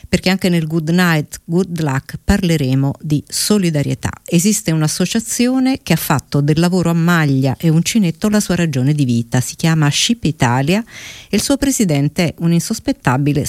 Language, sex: Italian, female